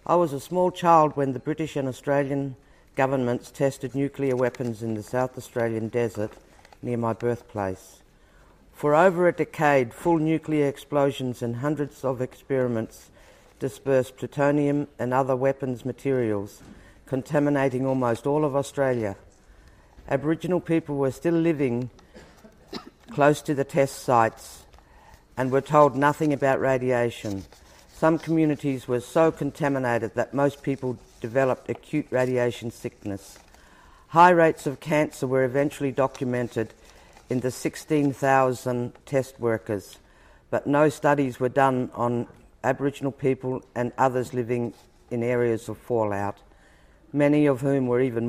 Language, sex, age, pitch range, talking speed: English, female, 50-69, 120-145 Hz, 130 wpm